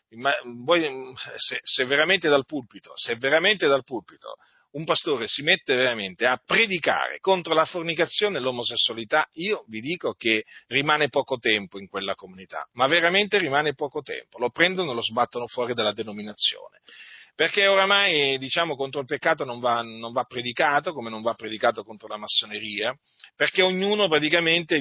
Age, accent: 40-59, native